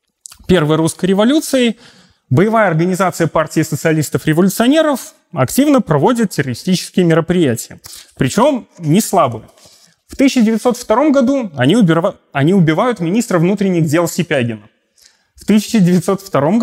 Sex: male